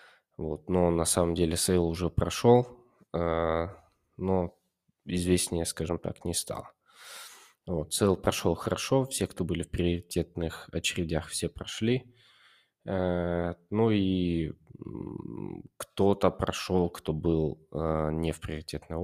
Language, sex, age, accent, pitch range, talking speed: Russian, male, 20-39, native, 85-105 Hz, 110 wpm